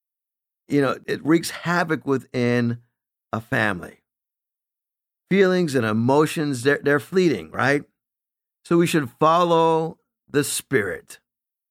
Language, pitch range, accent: English, 120-175 Hz, American